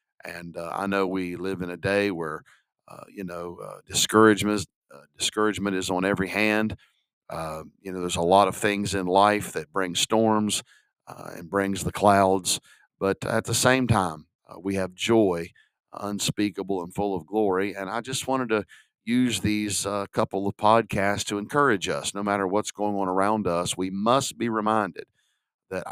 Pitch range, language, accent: 95-115 Hz, English, American